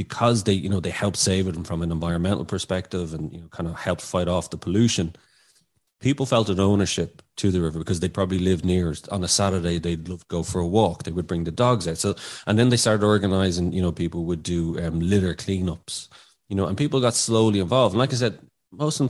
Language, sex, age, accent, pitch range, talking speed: English, male, 30-49, Irish, 85-110 Hz, 250 wpm